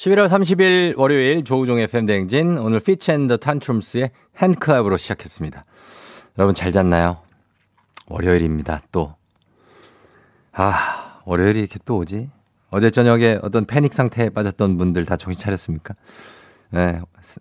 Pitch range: 95-130 Hz